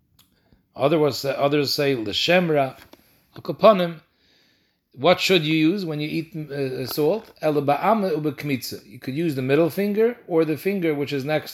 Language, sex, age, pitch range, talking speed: English, male, 40-59, 135-165 Hz, 125 wpm